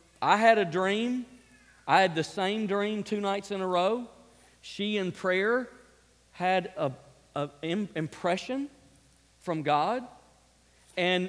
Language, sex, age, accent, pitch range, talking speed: English, male, 40-59, American, 150-200 Hz, 120 wpm